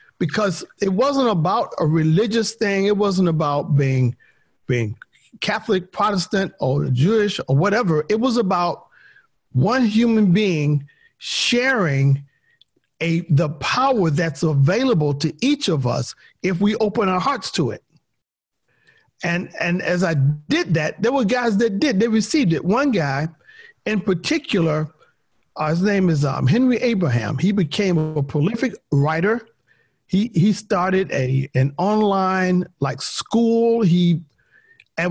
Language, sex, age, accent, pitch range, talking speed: English, male, 50-69, American, 150-215 Hz, 135 wpm